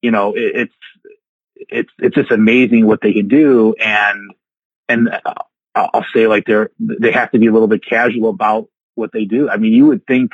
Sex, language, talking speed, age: male, English, 205 wpm, 30-49